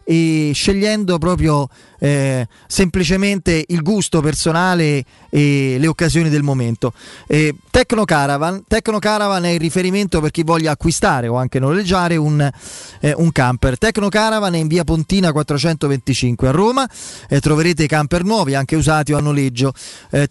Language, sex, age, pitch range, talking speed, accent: Italian, male, 30-49, 140-185 Hz, 155 wpm, native